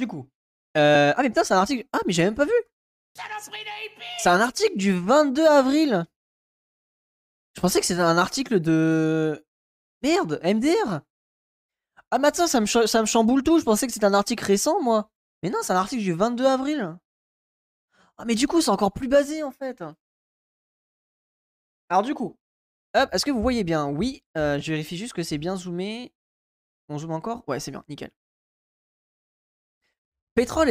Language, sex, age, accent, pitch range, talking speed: French, male, 20-39, French, 170-240 Hz, 170 wpm